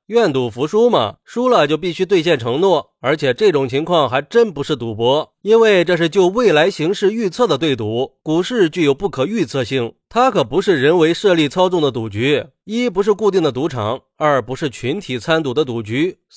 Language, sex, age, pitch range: Chinese, male, 30-49, 135-215 Hz